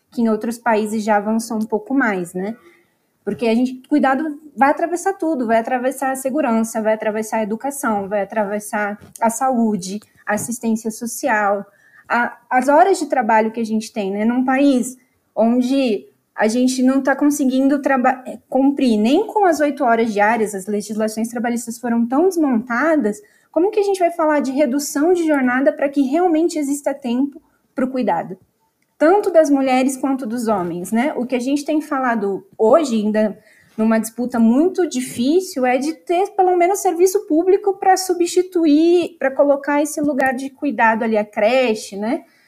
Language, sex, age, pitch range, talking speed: Portuguese, female, 20-39, 220-290 Hz, 165 wpm